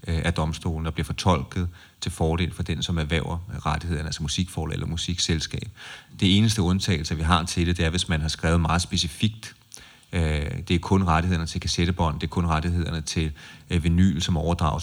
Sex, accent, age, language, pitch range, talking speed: male, native, 30-49, Danish, 80-95 Hz, 180 wpm